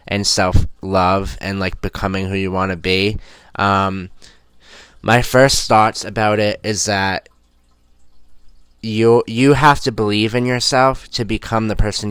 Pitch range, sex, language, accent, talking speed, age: 95-110 Hz, male, English, American, 140 wpm, 20-39